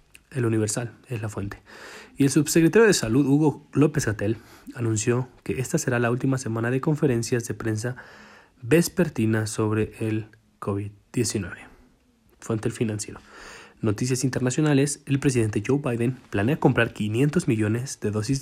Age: 20-39